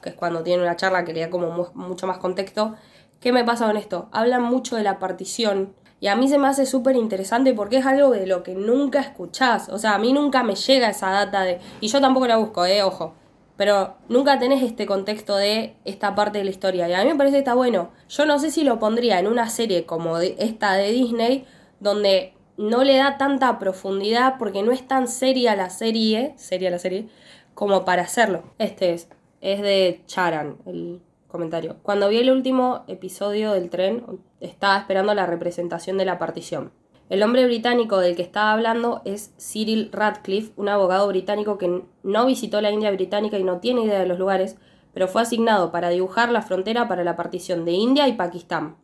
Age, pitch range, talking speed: 20-39, 185-235 Hz, 205 wpm